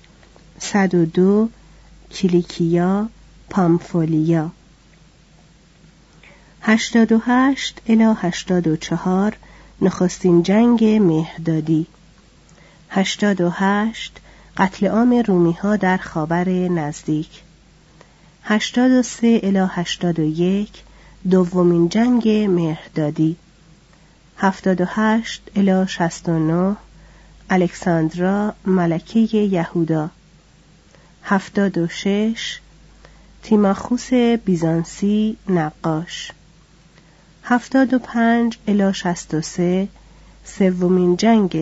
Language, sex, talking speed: Persian, female, 70 wpm